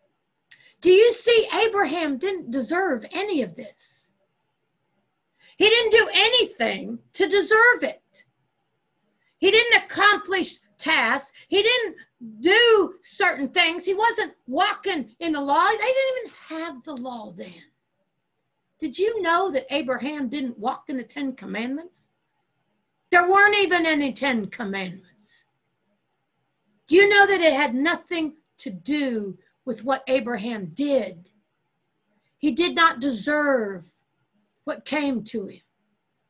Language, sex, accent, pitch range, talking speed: English, female, American, 230-345 Hz, 120 wpm